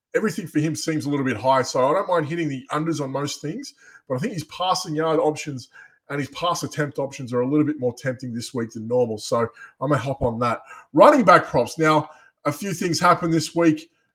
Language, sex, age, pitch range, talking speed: English, male, 20-39, 140-170 Hz, 240 wpm